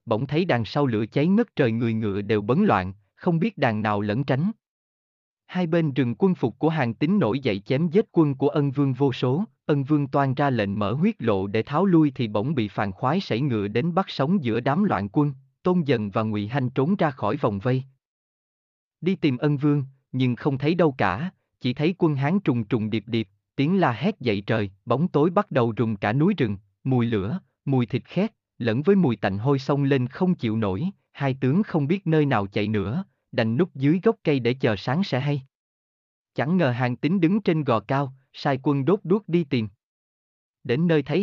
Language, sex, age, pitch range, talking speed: Vietnamese, male, 30-49, 110-160 Hz, 220 wpm